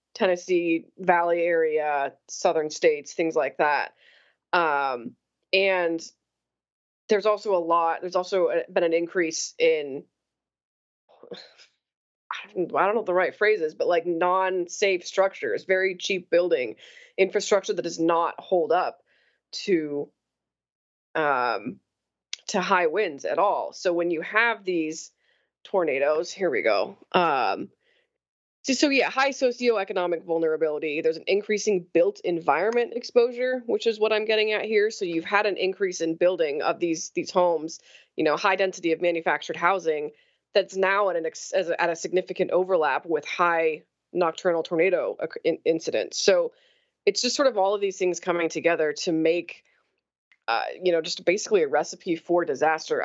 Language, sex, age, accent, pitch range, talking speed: English, female, 20-39, American, 165-215 Hz, 145 wpm